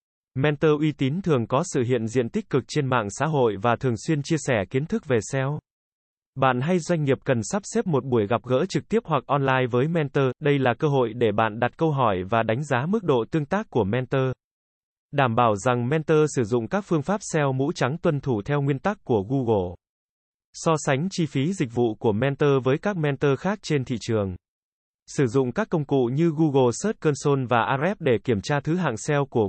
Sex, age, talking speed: male, 20-39, 225 wpm